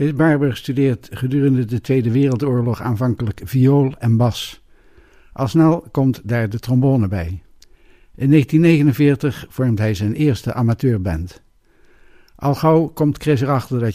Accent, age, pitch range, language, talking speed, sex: Dutch, 60-79, 110-140 Hz, Dutch, 130 wpm, male